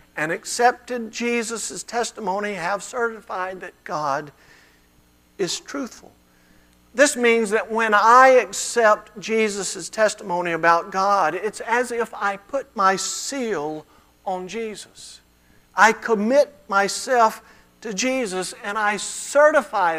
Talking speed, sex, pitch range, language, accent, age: 110 wpm, male, 160-240 Hz, English, American, 50-69